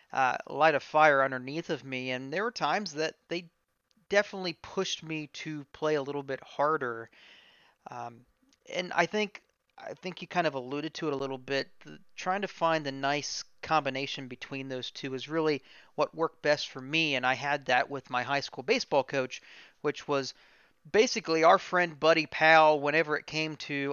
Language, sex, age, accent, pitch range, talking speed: English, male, 40-59, American, 135-165 Hz, 190 wpm